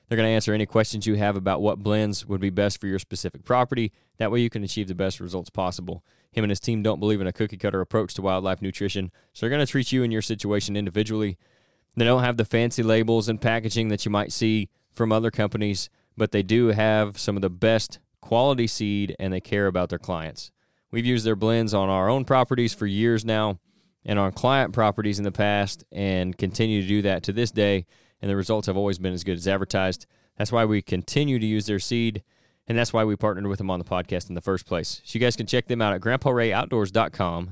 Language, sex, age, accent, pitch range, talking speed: English, male, 20-39, American, 95-115 Hz, 240 wpm